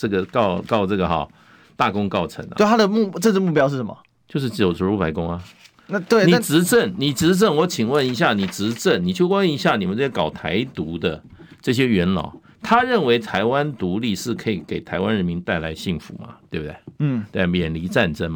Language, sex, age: Chinese, male, 50-69